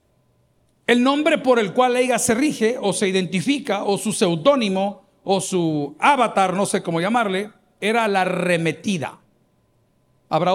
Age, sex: 50-69, male